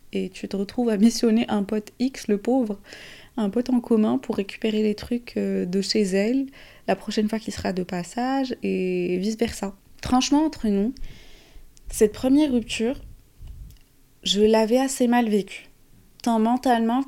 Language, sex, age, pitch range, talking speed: French, female, 20-39, 190-240 Hz, 155 wpm